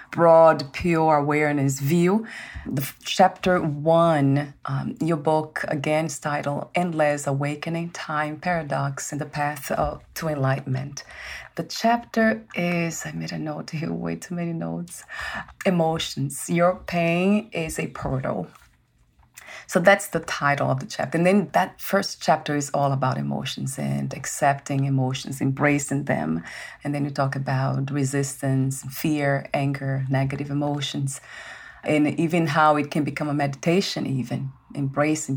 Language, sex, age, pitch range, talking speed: English, female, 30-49, 135-170 Hz, 135 wpm